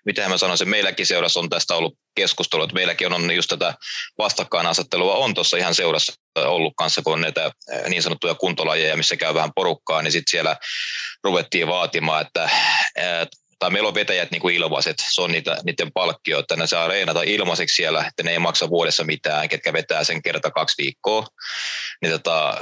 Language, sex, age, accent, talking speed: Finnish, male, 20-39, native, 180 wpm